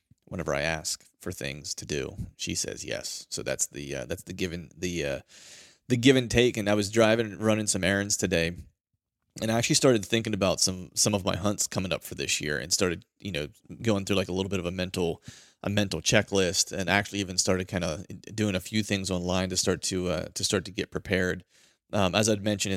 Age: 30-49